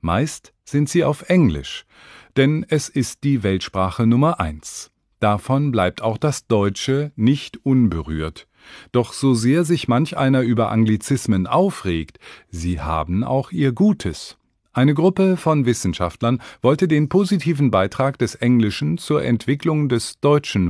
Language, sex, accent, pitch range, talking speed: English, male, German, 105-145 Hz, 135 wpm